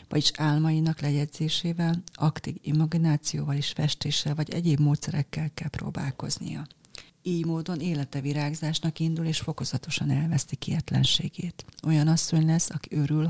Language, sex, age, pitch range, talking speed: Hungarian, female, 40-59, 140-160 Hz, 115 wpm